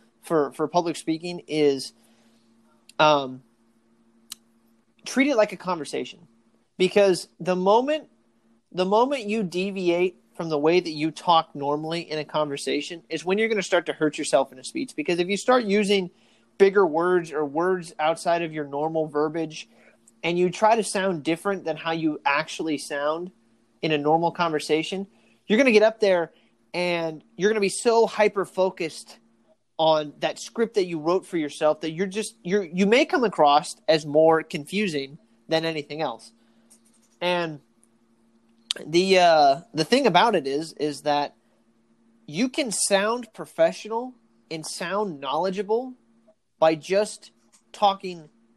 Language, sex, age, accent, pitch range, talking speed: English, male, 30-49, American, 140-195 Hz, 155 wpm